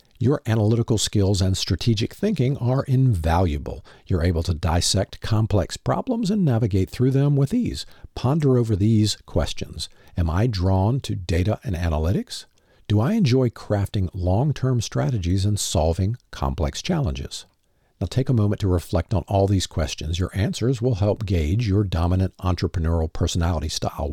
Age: 50-69